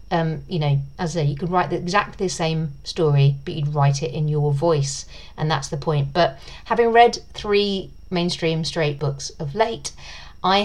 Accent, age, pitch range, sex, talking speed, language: British, 40-59, 145-175 Hz, female, 195 wpm, English